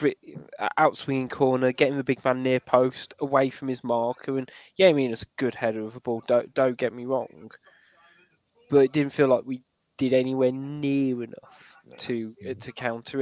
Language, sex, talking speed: English, male, 190 wpm